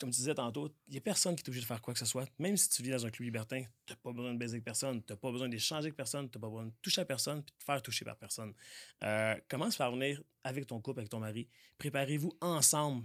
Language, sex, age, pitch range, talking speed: French, male, 20-39, 110-140 Hz, 310 wpm